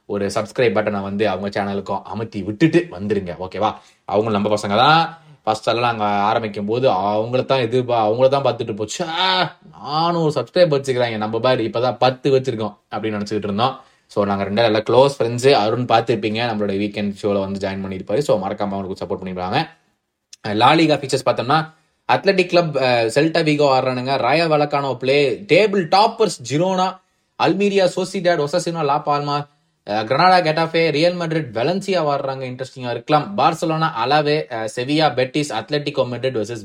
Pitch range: 110-160 Hz